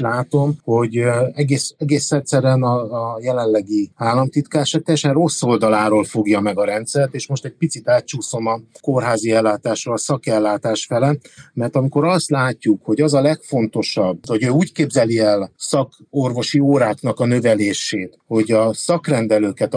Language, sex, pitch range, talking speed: Hungarian, male, 110-140 Hz, 145 wpm